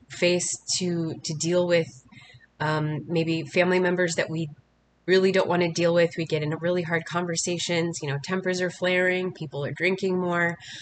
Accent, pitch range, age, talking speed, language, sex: American, 140-175 Hz, 20-39, 175 wpm, English, female